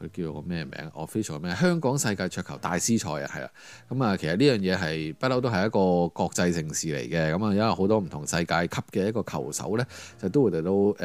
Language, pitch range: Chinese, 90-110 Hz